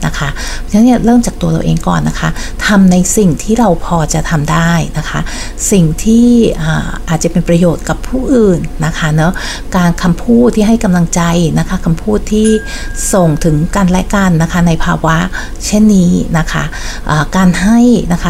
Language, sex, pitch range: Thai, female, 165-205 Hz